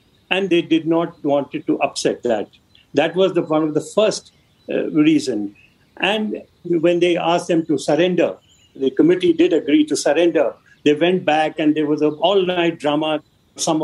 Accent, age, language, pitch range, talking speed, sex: Indian, 60-79, English, 160-205 Hz, 180 wpm, male